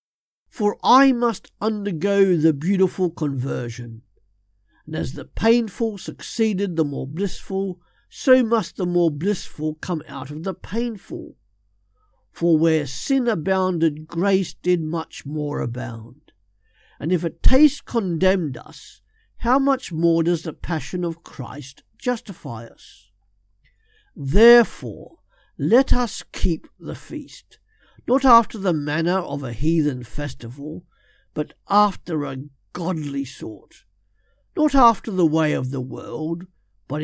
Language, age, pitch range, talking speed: English, 50-69, 145-215 Hz, 125 wpm